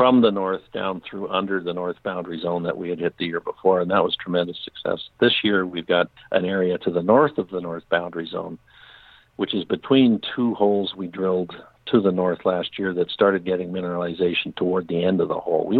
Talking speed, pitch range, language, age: 225 wpm, 90-100 Hz, English, 60-79